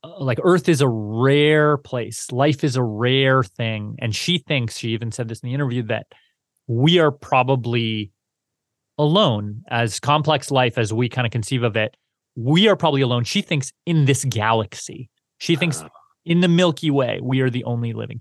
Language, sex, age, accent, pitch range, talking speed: English, male, 30-49, American, 115-145 Hz, 185 wpm